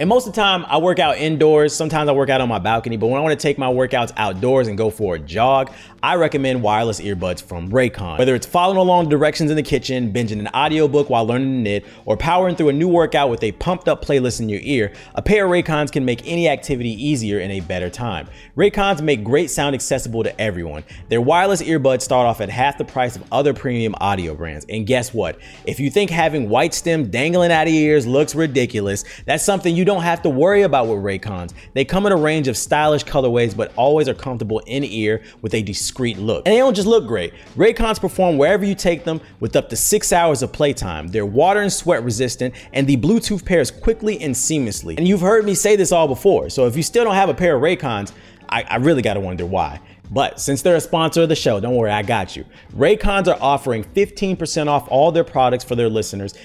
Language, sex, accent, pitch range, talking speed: English, male, American, 110-165 Hz, 235 wpm